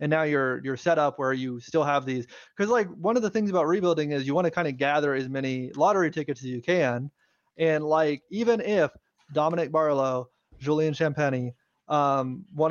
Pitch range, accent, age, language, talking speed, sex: 145-180 Hz, American, 30-49, English, 205 wpm, male